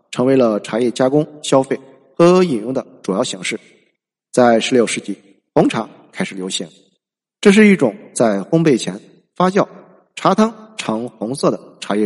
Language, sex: Chinese, male